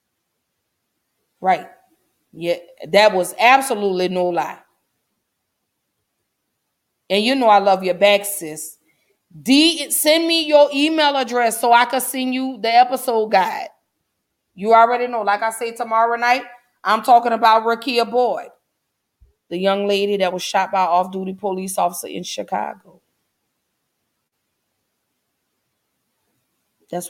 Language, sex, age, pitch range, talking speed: English, female, 30-49, 185-240 Hz, 130 wpm